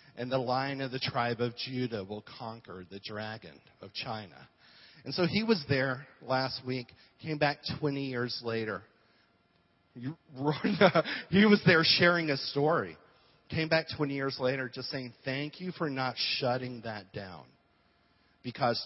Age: 40-59